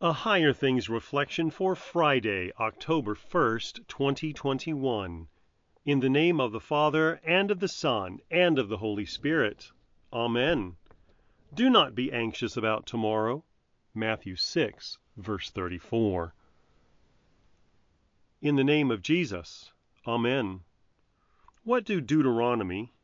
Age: 40-59